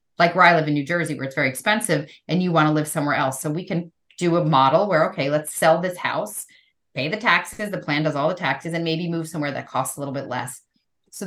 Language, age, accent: English, 30-49, American